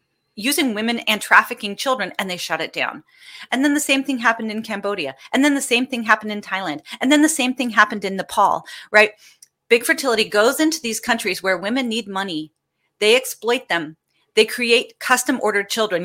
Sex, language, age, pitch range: female, English, 30-49, 180-240 Hz